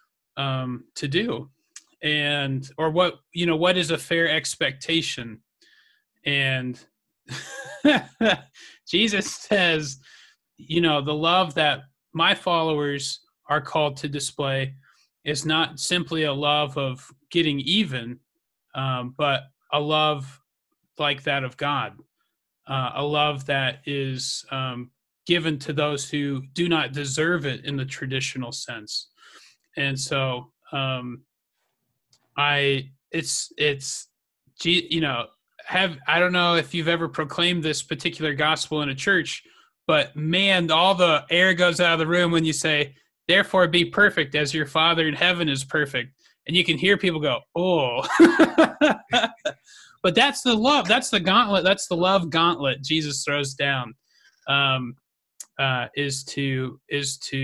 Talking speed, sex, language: 140 wpm, male, English